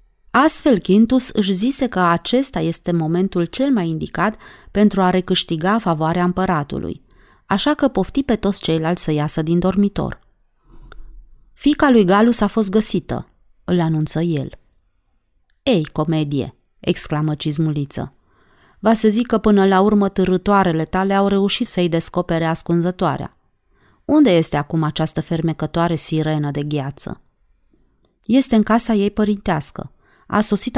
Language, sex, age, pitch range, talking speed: Romanian, female, 30-49, 160-210 Hz, 135 wpm